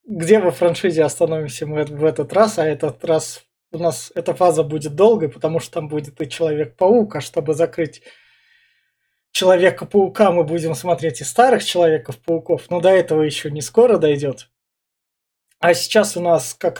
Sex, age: male, 20-39